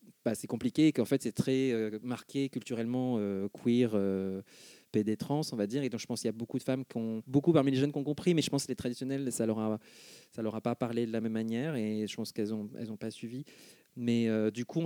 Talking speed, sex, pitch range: 270 wpm, male, 115-140 Hz